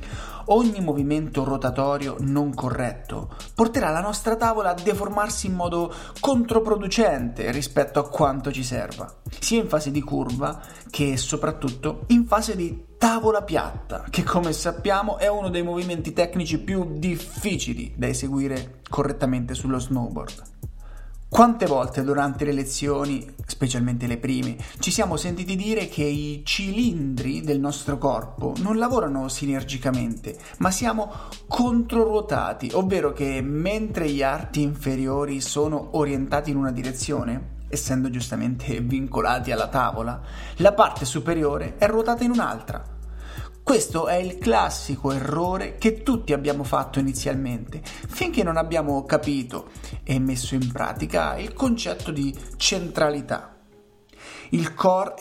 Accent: native